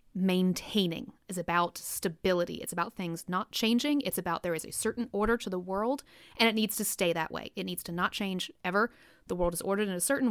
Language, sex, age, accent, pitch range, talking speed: English, female, 30-49, American, 185-230 Hz, 225 wpm